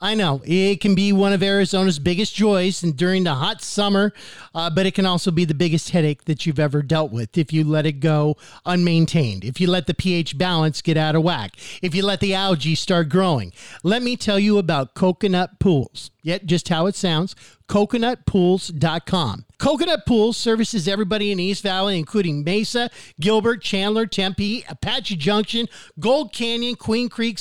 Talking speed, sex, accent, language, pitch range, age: 180 wpm, male, American, English, 175-225 Hz, 50-69